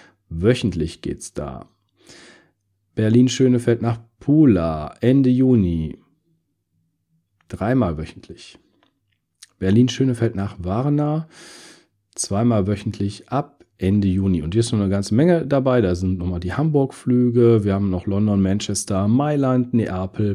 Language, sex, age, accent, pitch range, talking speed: German, male, 40-59, German, 90-125 Hz, 115 wpm